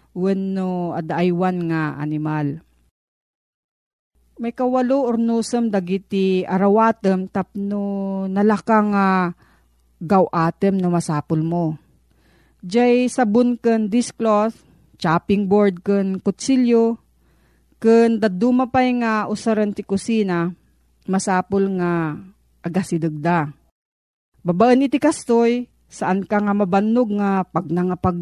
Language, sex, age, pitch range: Filipino, female, 40-59, 175-225 Hz